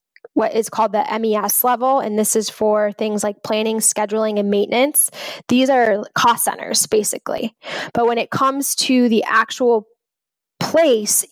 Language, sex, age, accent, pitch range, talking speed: English, female, 10-29, American, 220-250 Hz, 155 wpm